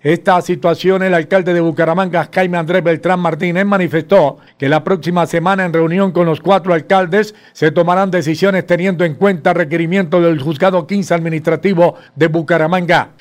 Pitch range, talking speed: 155-190 Hz, 155 wpm